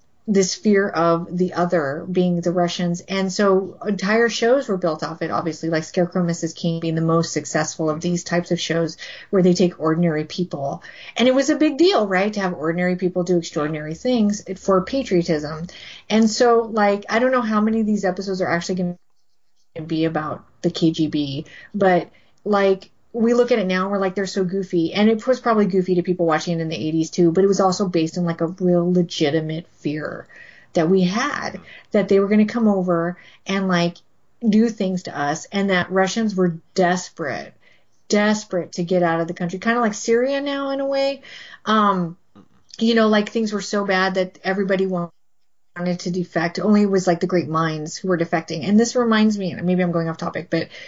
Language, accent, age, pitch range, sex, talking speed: English, American, 30-49, 170-205 Hz, female, 210 wpm